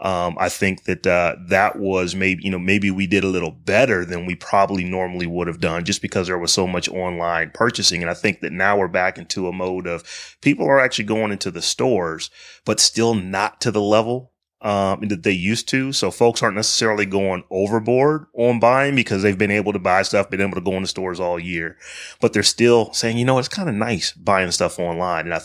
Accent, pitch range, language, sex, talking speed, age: American, 90-115 Hz, English, male, 230 wpm, 30-49